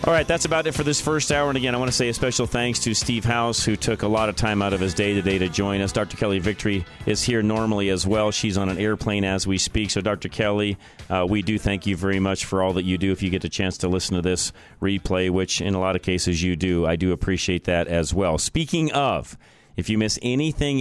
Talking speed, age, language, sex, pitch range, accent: 275 wpm, 40-59, English, male, 100-120 Hz, American